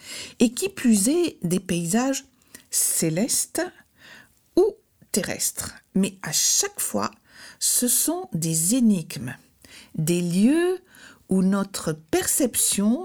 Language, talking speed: French, 100 wpm